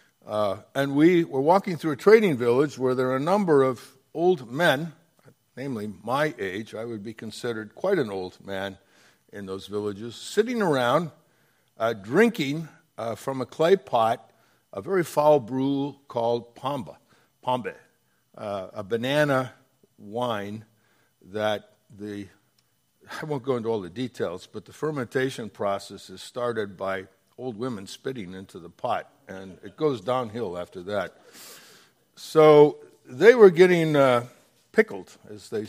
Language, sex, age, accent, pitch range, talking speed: English, male, 60-79, American, 110-165 Hz, 145 wpm